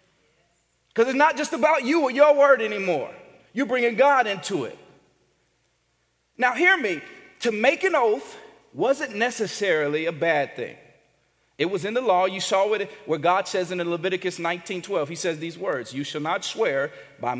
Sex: male